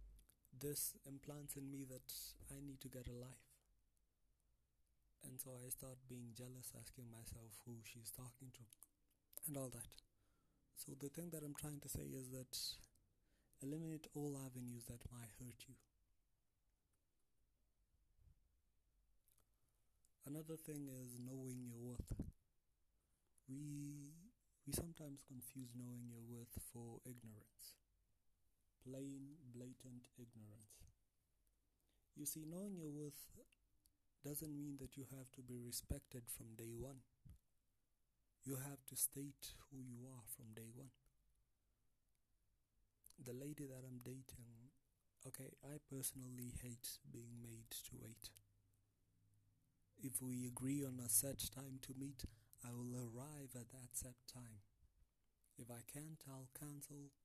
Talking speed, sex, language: 125 wpm, male, English